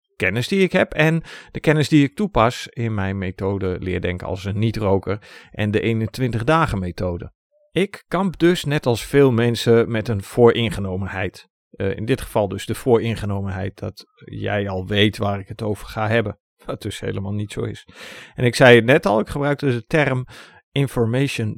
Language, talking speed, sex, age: Dutch, 180 wpm, male, 50-69